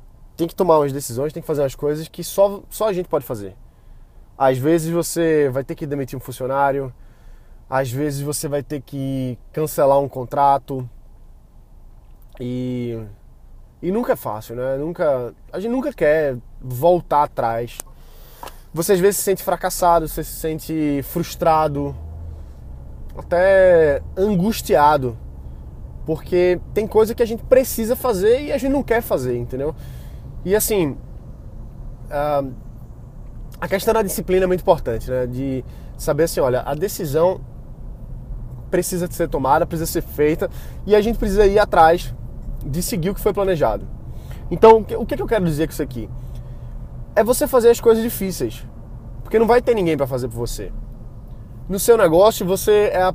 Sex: male